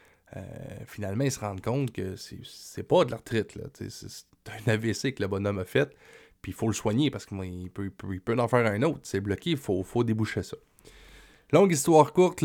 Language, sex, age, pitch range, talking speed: French, male, 20-39, 100-125 Hz, 225 wpm